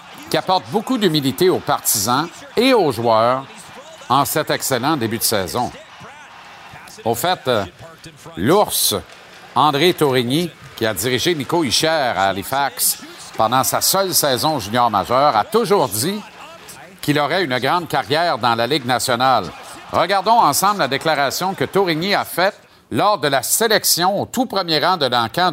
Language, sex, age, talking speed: French, male, 50-69, 150 wpm